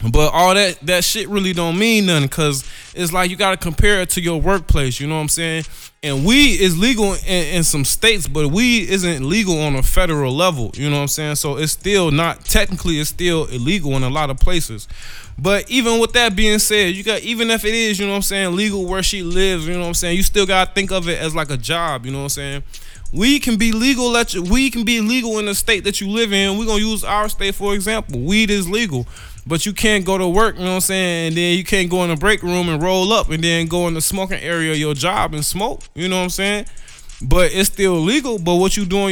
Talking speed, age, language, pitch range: 270 wpm, 20-39, English, 155-205 Hz